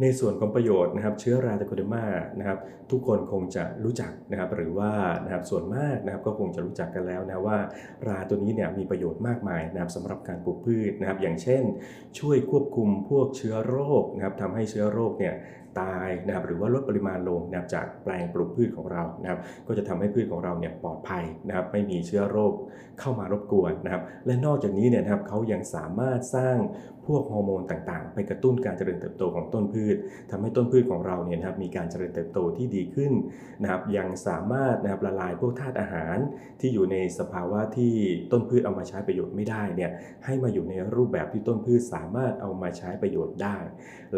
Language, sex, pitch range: Thai, male, 95-120 Hz